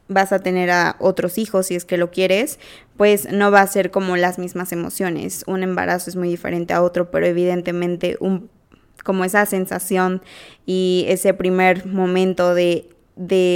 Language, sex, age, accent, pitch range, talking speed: Spanish, female, 20-39, Mexican, 175-195 Hz, 175 wpm